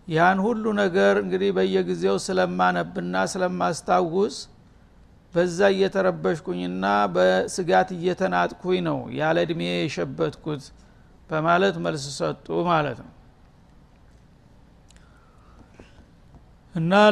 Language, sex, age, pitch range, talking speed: Amharic, male, 60-79, 155-190 Hz, 80 wpm